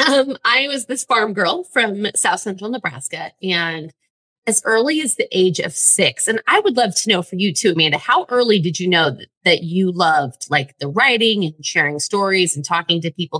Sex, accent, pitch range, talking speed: female, American, 175-255 Hz, 210 wpm